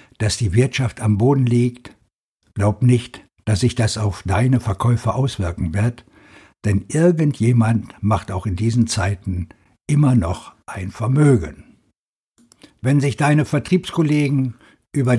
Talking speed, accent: 125 wpm, German